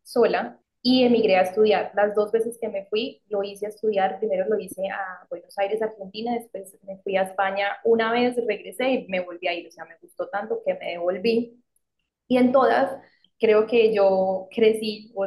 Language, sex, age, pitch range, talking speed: Spanish, female, 20-39, 190-225 Hz, 200 wpm